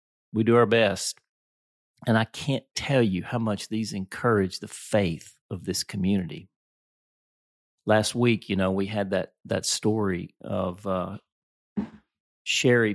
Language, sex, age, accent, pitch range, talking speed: English, male, 40-59, American, 95-120 Hz, 140 wpm